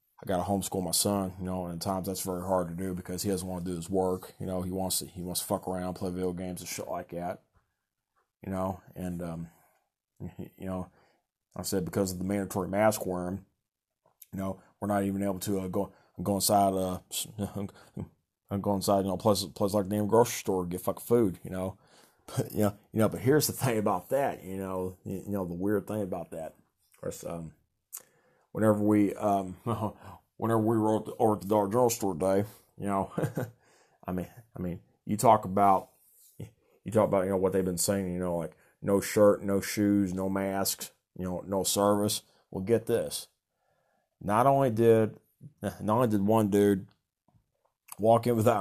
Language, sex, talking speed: English, male, 200 wpm